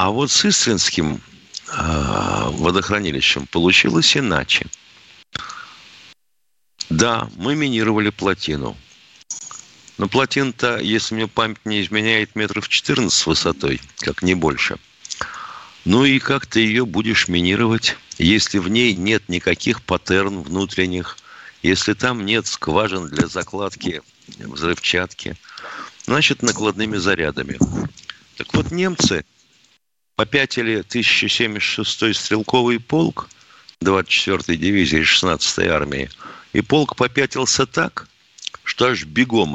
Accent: native